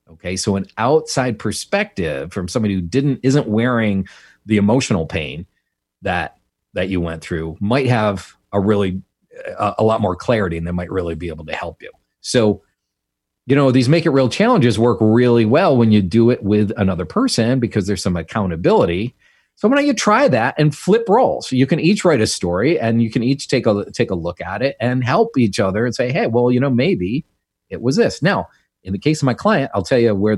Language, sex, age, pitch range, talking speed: English, male, 40-59, 100-135 Hz, 215 wpm